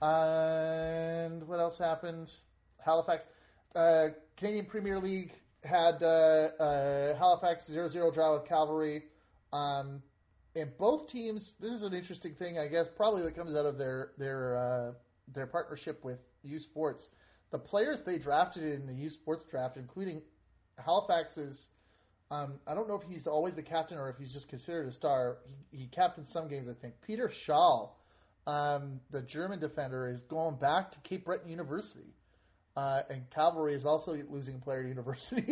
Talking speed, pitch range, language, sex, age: 165 wpm, 135-170 Hz, English, male, 30-49